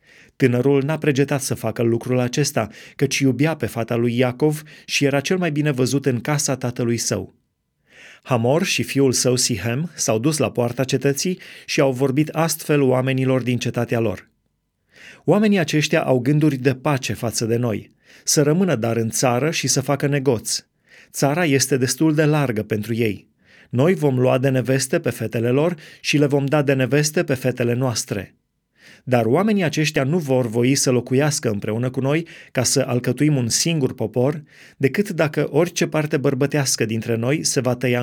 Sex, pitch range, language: male, 120-150 Hz, Romanian